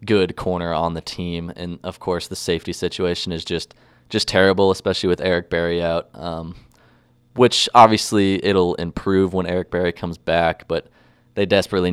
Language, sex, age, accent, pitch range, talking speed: English, male, 20-39, American, 85-95 Hz, 165 wpm